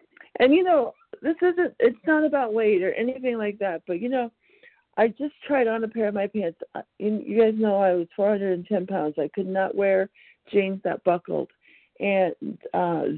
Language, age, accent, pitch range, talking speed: English, 50-69, American, 180-220 Hz, 185 wpm